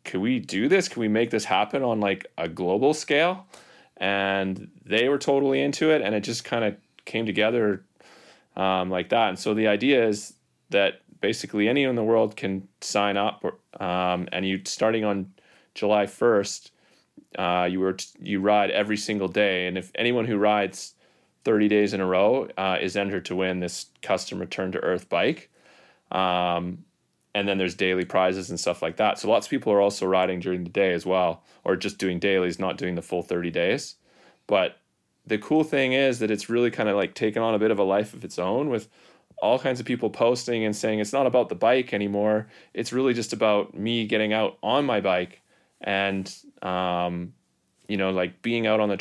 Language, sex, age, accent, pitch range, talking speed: English, male, 30-49, American, 95-115 Hz, 205 wpm